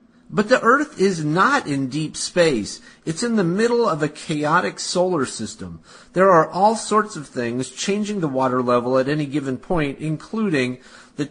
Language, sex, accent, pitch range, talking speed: English, male, American, 140-205 Hz, 175 wpm